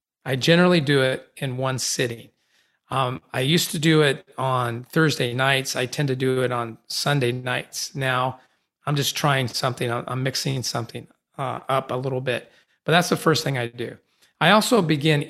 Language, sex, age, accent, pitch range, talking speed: English, male, 40-59, American, 130-155 Hz, 185 wpm